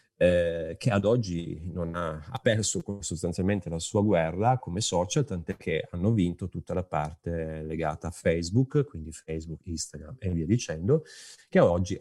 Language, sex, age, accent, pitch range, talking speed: Italian, male, 30-49, native, 85-110 Hz, 160 wpm